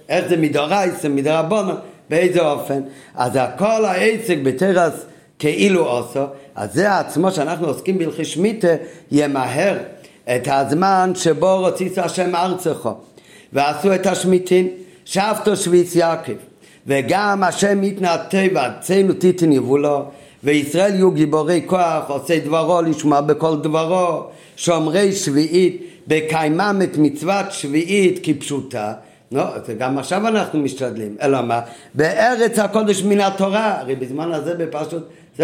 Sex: male